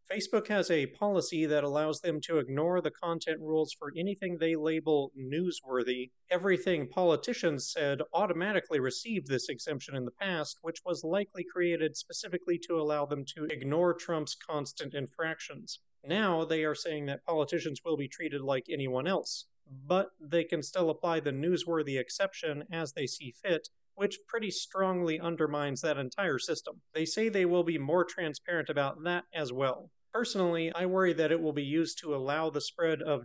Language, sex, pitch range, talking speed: English, male, 150-180 Hz, 170 wpm